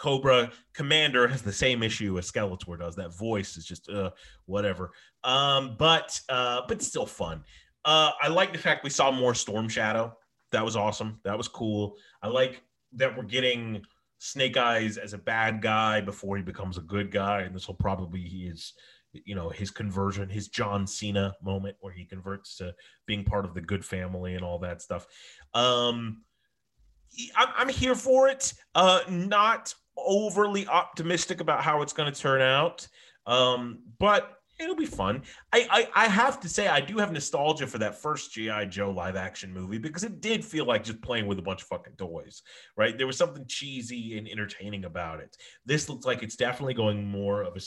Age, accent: 30-49, American